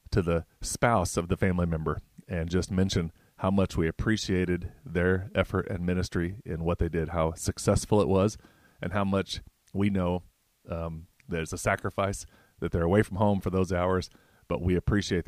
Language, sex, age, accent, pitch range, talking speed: English, male, 30-49, American, 85-105 Hz, 180 wpm